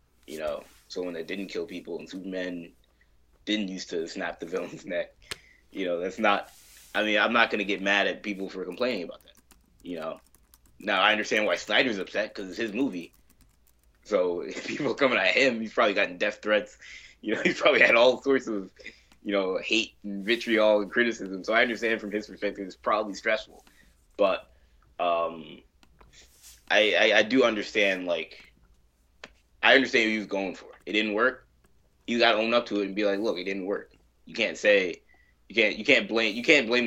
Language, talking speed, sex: English, 200 wpm, male